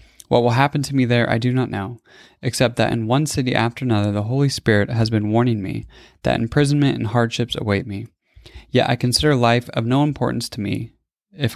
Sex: male